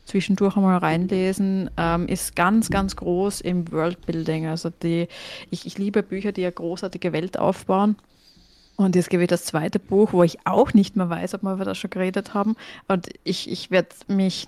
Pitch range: 180-200 Hz